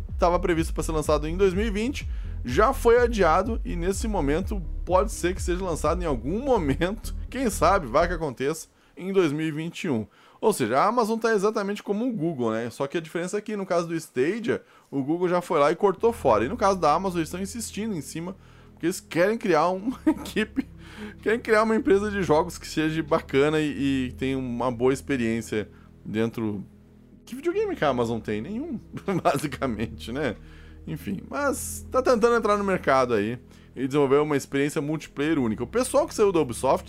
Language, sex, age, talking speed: Portuguese, male, 10-29, 190 wpm